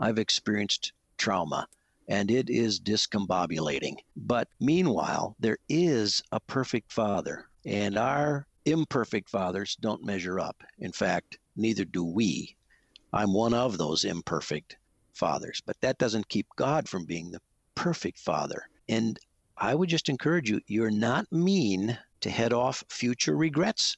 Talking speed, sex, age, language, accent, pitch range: 140 wpm, male, 50-69, English, American, 100-135 Hz